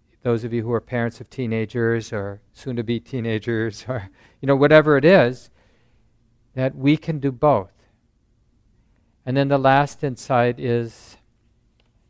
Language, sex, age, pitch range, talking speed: English, male, 50-69, 115-145 Hz, 140 wpm